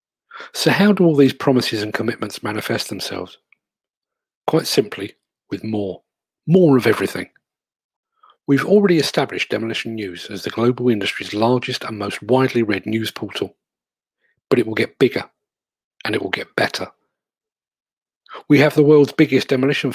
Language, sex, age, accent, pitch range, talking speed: English, male, 40-59, British, 115-145 Hz, 145 wpm